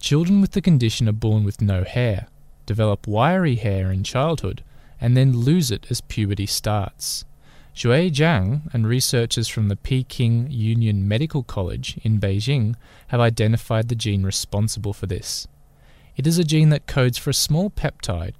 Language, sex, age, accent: English, male, 20-39, Australian